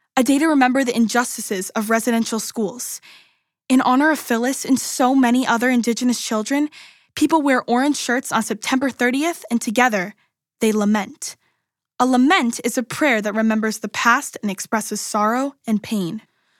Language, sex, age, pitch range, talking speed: English, female, 10-29, 225-275 Hz, 160 wpm